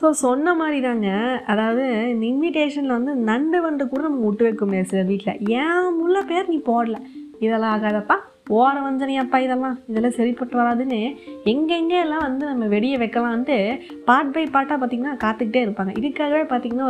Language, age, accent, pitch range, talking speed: Tamil, 20-39, native, 210-270 Hz, 155 wpm